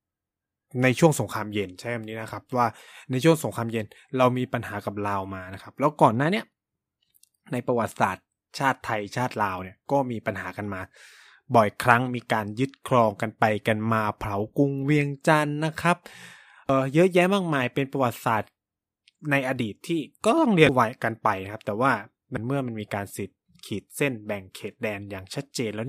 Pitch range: 105-135 Hz